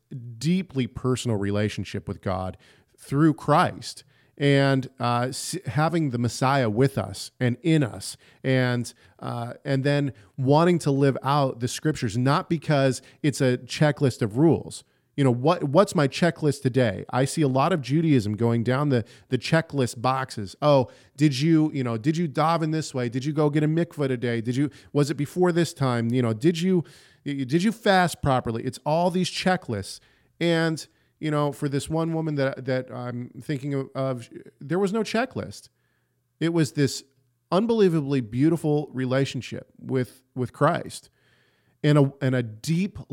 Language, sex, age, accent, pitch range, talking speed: English, male, 40-59, American, 120-155 Hz, 170 wpm